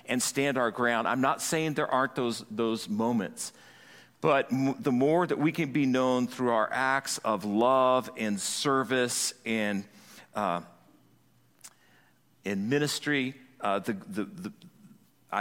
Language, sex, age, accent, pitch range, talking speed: English, male, 50-69, American, 130-205 Hz, 140 wpm